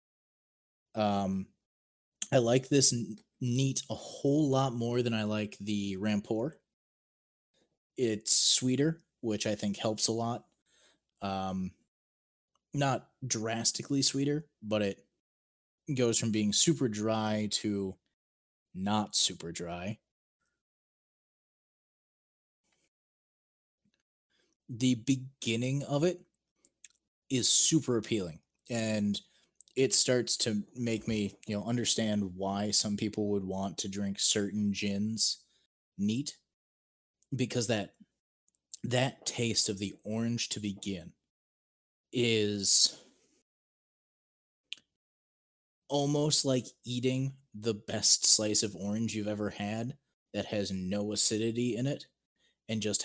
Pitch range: 100-125 Hz